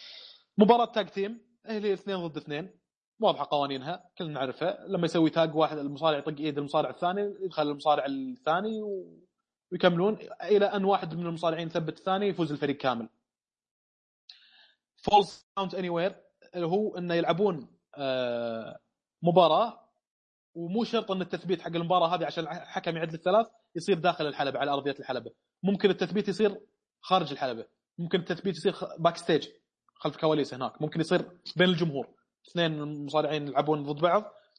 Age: 30-49